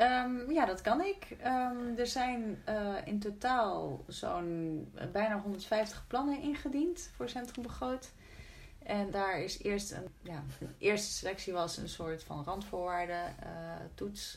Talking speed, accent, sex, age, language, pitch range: 140 wpm, Dutch, female, 30-49, Dutch, 175-220 Hz